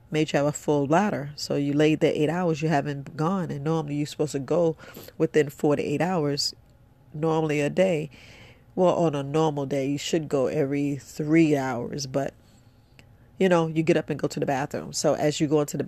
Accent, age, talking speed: American, 40-59, 215 wpm